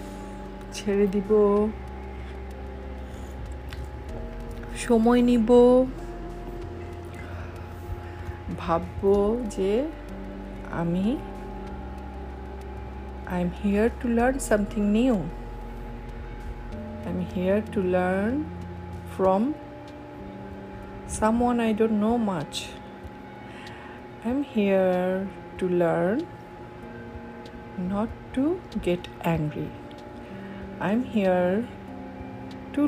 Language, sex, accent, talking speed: Bengali, female, native, 60 wpm